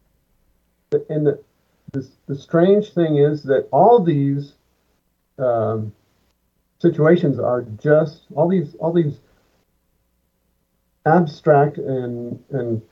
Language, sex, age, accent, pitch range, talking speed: English, male, 50-69, American, 115-170 Hz, 100 wpm